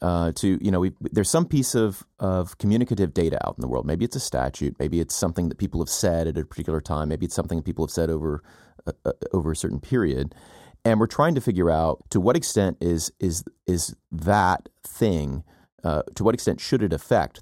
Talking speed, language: 225 wpm, English